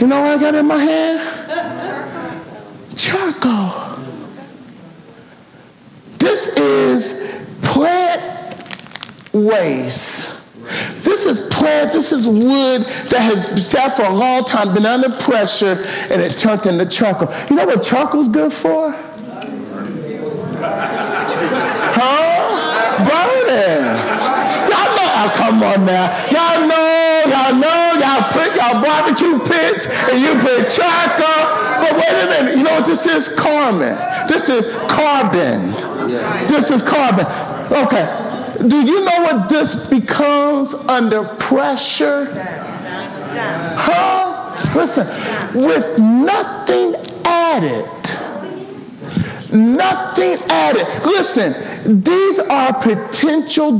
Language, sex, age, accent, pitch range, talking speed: English, male, 50-69, American, 220-320 Hz, 105 wpm